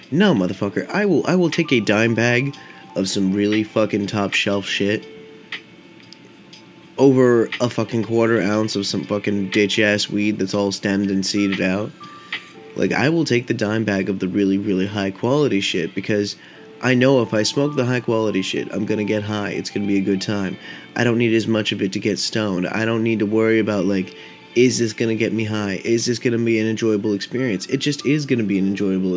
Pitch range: 100-120 Hz